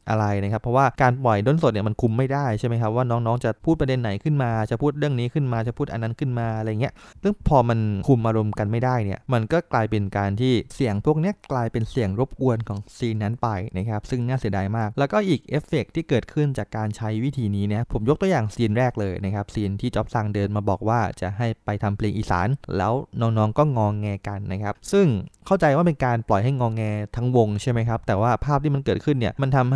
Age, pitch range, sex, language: 20-39, 105-135 Hz, male, English